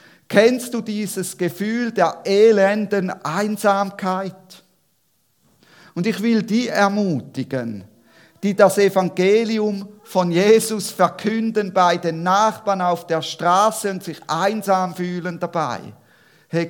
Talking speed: 110 wpm